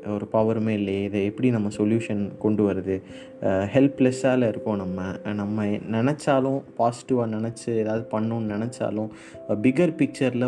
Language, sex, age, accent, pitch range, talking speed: Tamil, male, 20-39, native, 105-130 Hz, 120 wpm